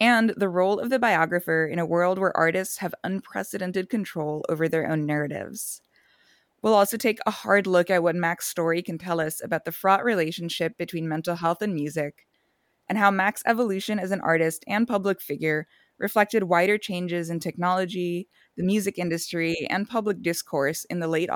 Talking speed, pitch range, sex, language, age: 180 wpm, 165-210 Hz, female, English, 20-39